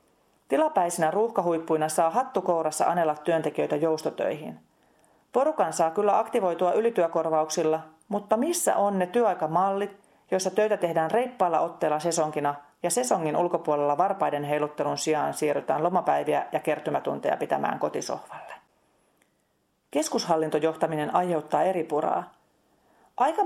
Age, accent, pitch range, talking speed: 40-59, native, 155-195 Hz, 100 wpm